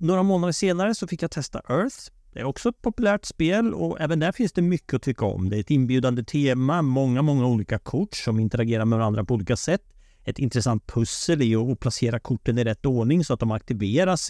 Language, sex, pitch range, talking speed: Swedish, male, 105-155 Hz, 225 wpm